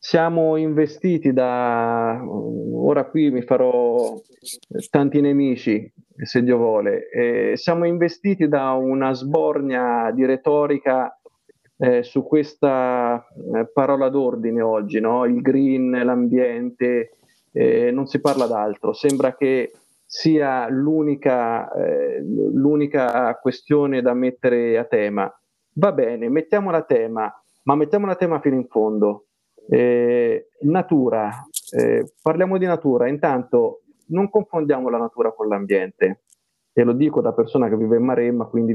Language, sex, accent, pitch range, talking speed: Italian, male, native, 120-155 Hz, 125 wpm